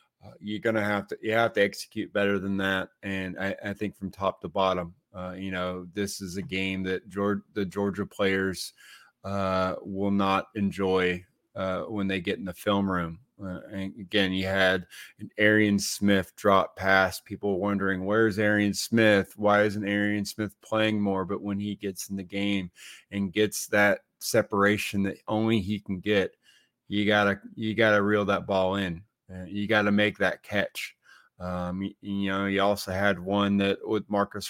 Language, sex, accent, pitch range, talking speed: English, male, American, 95-105 Hz, 185 wpm